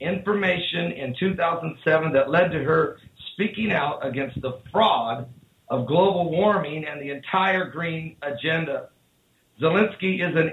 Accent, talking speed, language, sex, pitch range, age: American, 130 wpm, English, male, 155-210 Hz, 50-69